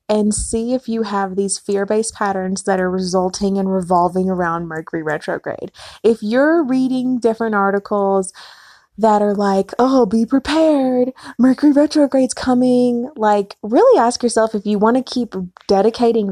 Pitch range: 190-225 Hz